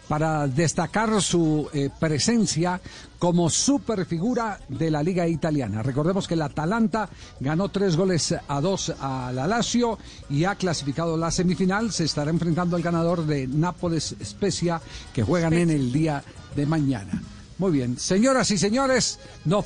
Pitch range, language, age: 130-180 Hz, Spanish, 50-69